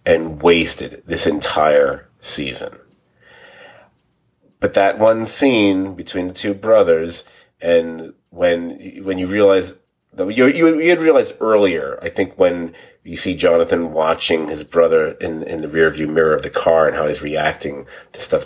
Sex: male